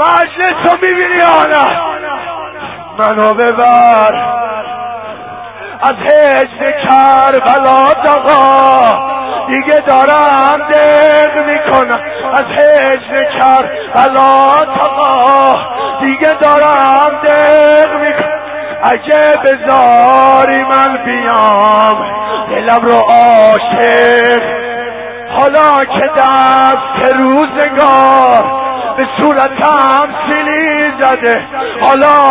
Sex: male